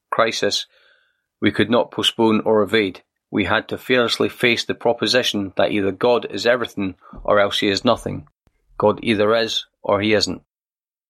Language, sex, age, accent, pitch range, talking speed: English, male, 30-49, British, 100-125 Hz, 160 wpm